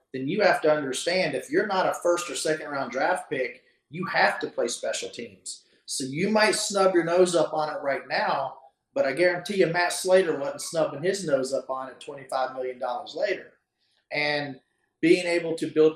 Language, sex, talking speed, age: English, male, 200 wpm, 40-59